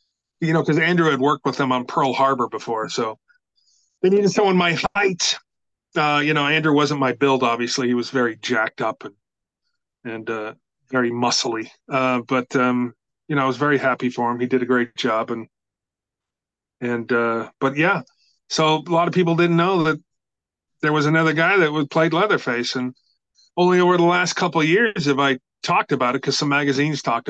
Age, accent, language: 30-49, American, English